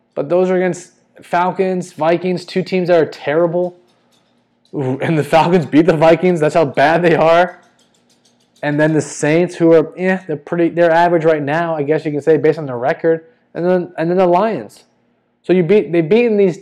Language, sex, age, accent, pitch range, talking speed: English, male, 20-39, American, 130-175 Hz, 205 wpm